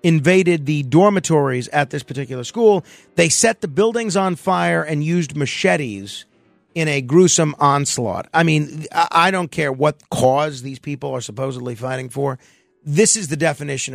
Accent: American